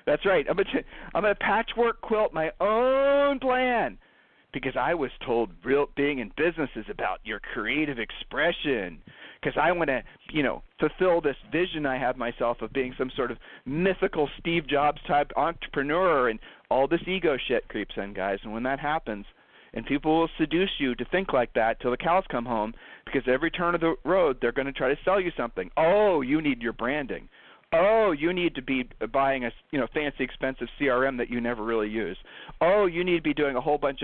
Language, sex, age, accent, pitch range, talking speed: English, male, 40-59, American, 130-185 Hz, 205 wpm